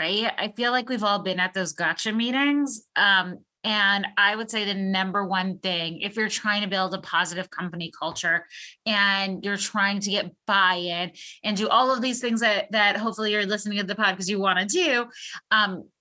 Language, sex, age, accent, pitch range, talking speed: English, female, 20-39, American, 180-220 Hz, 205 wpm